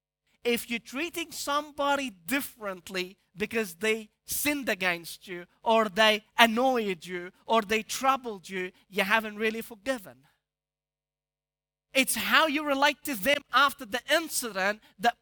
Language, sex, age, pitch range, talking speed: English, male, 30-49, 195-225 Hz, 125 wpm